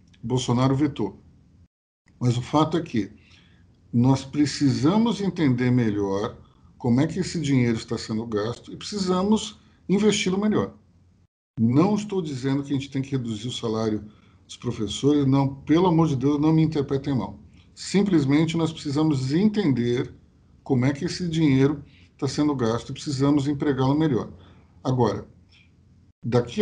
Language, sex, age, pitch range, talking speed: Portuguese, male, 50-69, 110-150 Hz, 140 wpm